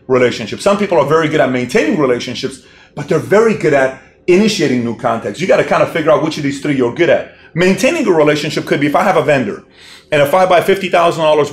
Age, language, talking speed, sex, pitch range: 40-59, English, 240 wpm, male, 135-190 Hz